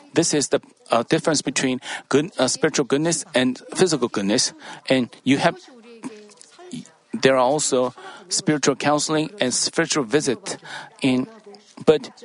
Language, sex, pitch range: Korean, male, 135-170 Hz